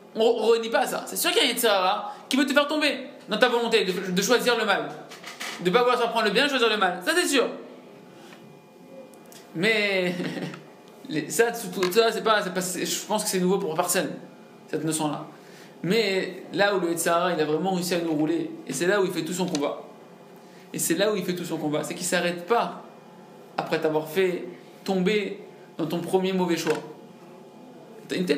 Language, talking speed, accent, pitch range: French, 215 wpm, French, 175-230 Hz